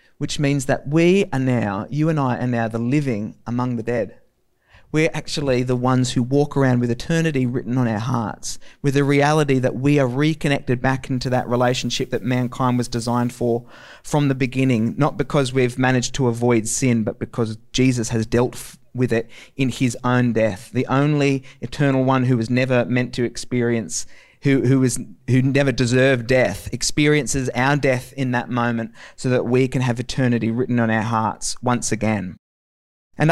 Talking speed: 180 wpm